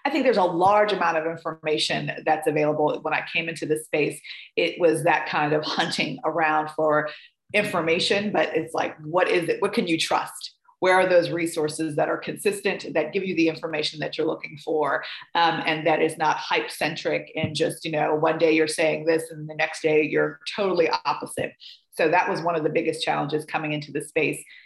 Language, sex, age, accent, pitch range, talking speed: English, female, 30-49, American, 155-170 Hz, 205 wpm